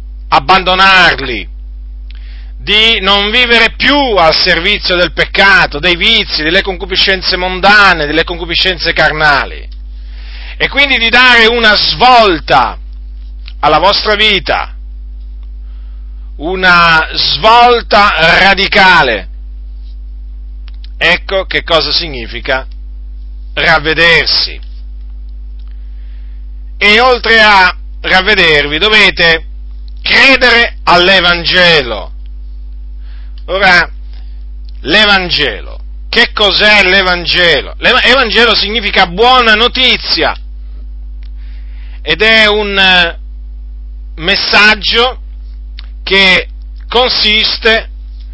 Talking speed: 70 wpm